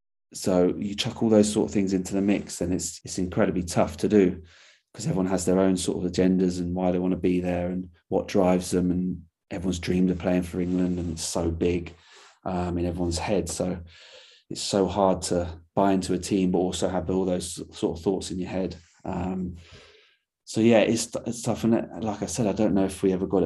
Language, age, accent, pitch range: English, 30-49, British, 90-100 Hz